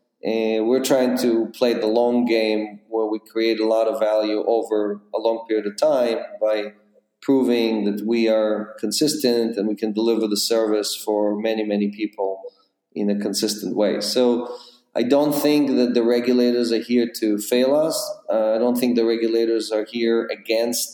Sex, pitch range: male, 110-125 Hz